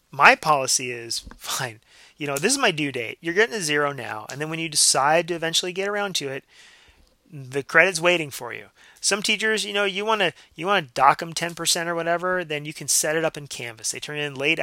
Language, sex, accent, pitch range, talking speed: English, male, American, 130-175 Hz, 240 wpm